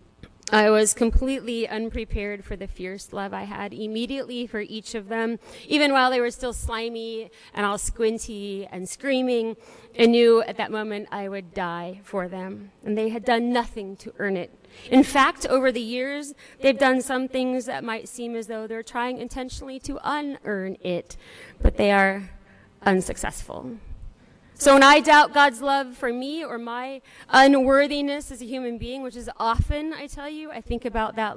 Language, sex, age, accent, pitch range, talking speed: English, female, 30-49, American, 210-260 Hz, 180 wpm